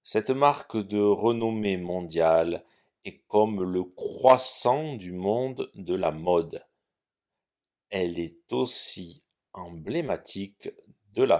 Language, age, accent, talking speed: French, 40-59, French, 105 wpm